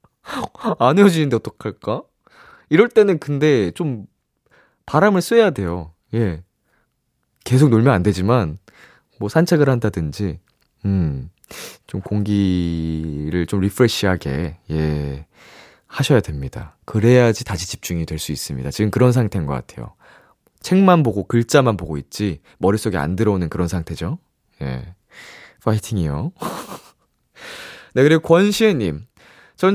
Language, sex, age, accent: Korean, male, 20-39, native